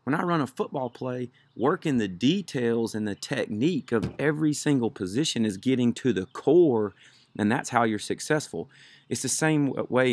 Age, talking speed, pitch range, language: 40-59, 180 wpm, 110-140 Hz, English